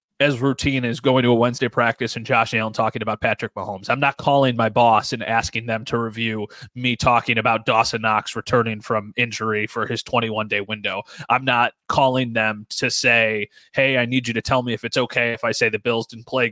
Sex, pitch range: male, 115-140 Hz